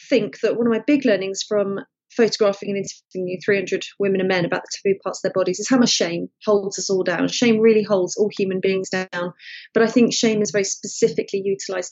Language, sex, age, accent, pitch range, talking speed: English, female, 30-49, British, 190-230 Hz, 225 wpm